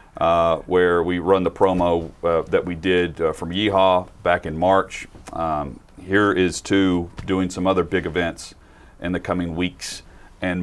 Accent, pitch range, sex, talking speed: American, 90-125 Hz, male, 170 wpm